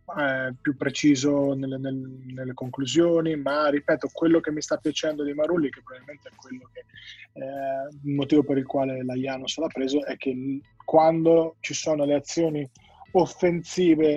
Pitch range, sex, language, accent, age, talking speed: 130-150 Hz, male, Italian, native, 20-39, 155 wpm